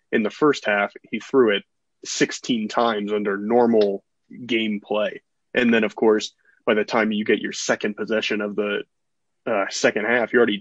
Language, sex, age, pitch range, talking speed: English, male, 20-39, 105-115 Hz, 180 wpm